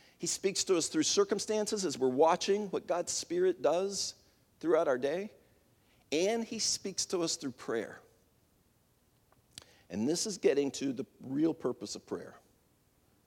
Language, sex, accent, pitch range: English, male, American, 135-215 Hz